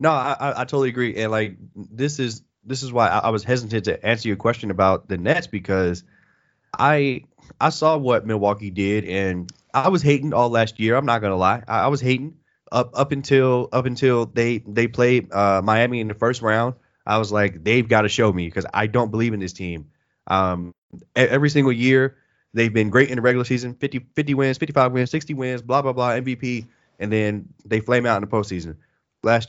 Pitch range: 105-125 Hz